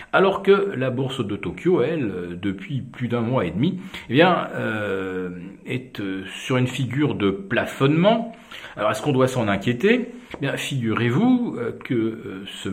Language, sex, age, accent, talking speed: French, male, 50-69, French, 155 wpm